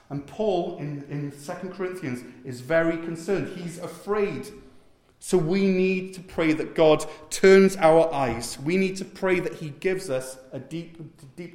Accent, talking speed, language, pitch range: British, 165 wpm, English, 145-185 Hz